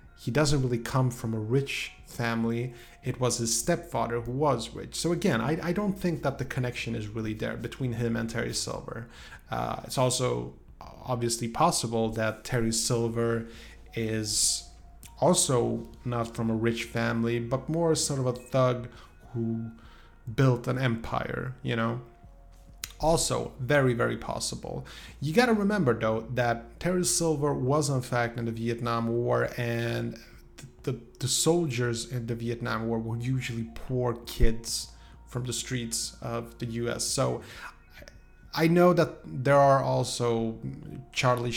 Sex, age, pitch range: male, 30-49, 115-130 Hz